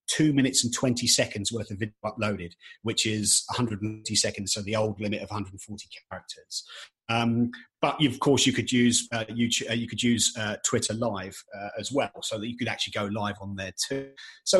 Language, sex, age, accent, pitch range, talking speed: English, male, 30-49, British, 105-135 Hz, 200 wpm